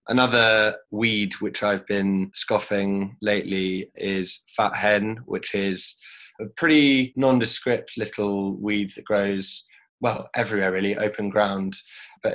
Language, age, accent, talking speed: English, 20-39, British, 120 wpm